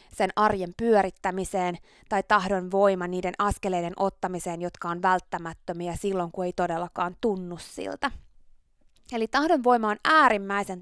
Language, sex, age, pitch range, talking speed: Finnish, female, 20-39, 190-245 Hz, 115 wpm